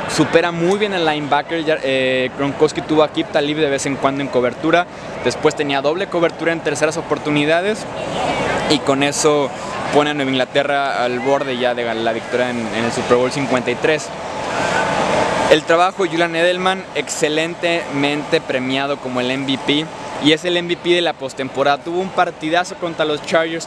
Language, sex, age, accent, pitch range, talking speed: Spanish, male, 20-39, Mexican, 135-165 Hz, 170 wpm